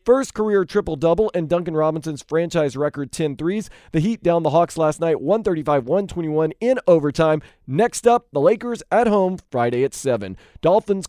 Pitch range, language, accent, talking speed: 140-200 Hz, English, American, 155 wpm